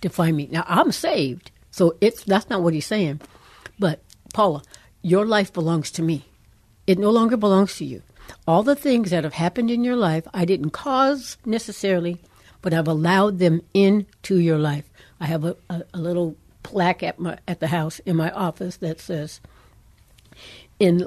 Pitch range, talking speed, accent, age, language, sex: 160-200 Hz, 180 wpm, American, 60-79, English, female